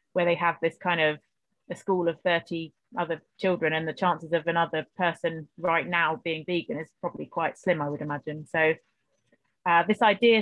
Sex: female